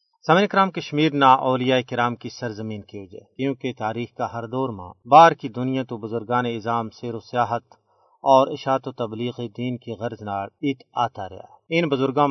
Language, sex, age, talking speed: Urdu, male, 40-59, 180 wpm